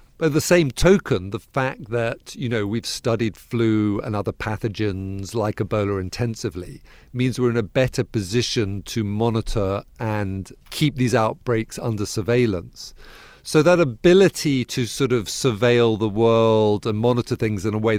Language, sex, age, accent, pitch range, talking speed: English, male, 50-69, British, 105-125 Hz, 155 wpm